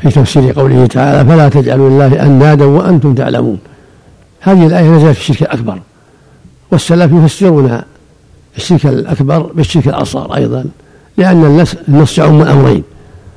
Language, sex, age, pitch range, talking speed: Arabic, male, 60-79, 135-160 Hz, 120 wpm